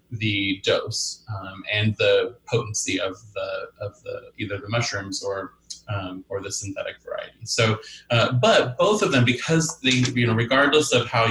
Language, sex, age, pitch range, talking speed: English, male, 20-39, 105-125 Hz, 170 wpm